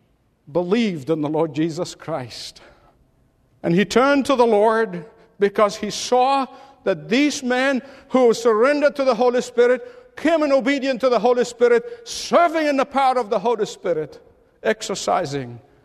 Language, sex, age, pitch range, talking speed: English, male, 50-69, 165-270 Hz, 150 wpm